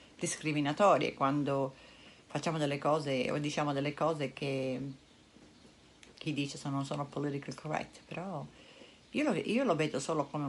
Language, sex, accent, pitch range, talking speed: Italian, female, native, 150-215 Hz, 145 wpm